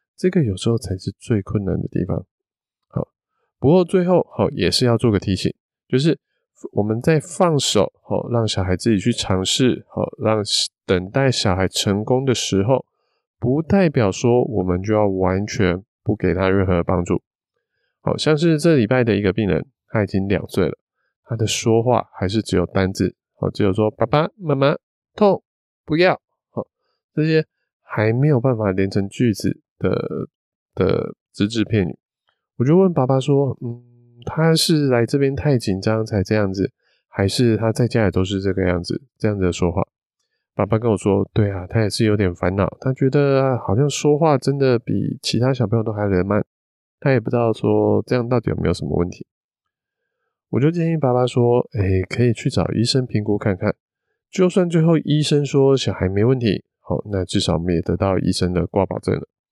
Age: 20-39